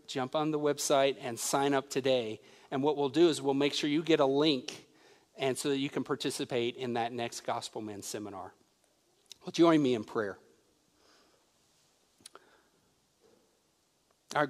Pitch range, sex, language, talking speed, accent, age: 125-155 Hz, male, English, 155 wpm, American, 50-69